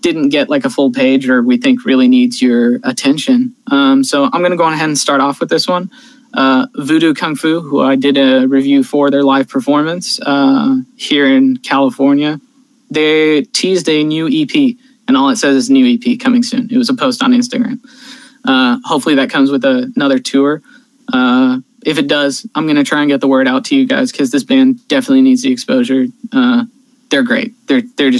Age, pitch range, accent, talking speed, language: 20-39, 160-265 Hz, American, 210 wpm, English